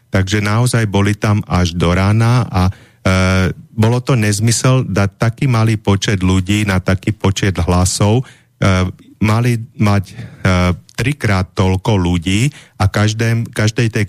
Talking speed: 135 wpm